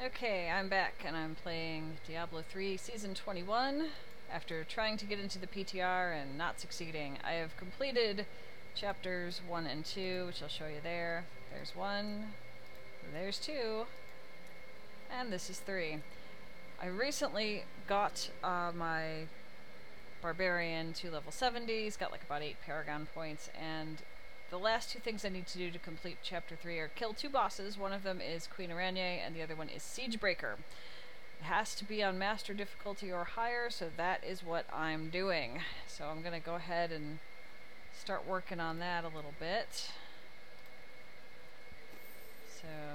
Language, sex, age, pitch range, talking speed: English, female, 30-49, 160-200 Hz, 160 wpm